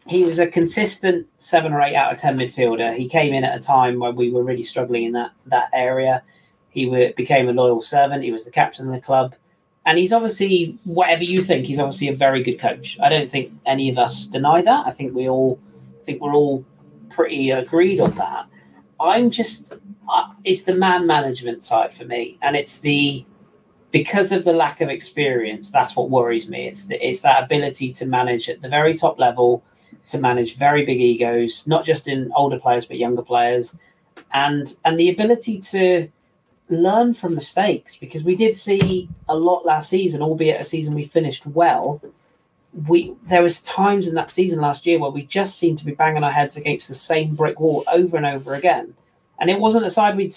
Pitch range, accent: 130-175 Hz, British